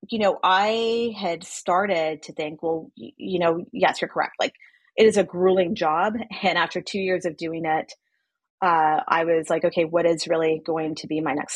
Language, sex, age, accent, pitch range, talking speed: English, female, 30-49, American, 155-185 Hz, 200 wpm